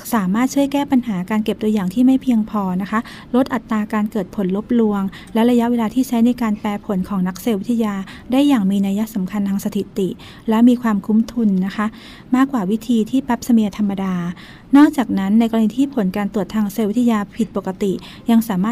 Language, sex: Thai, female